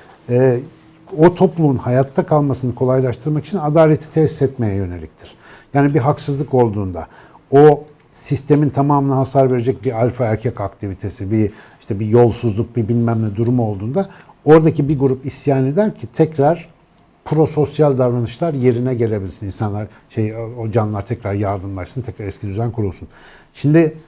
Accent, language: native, Turkish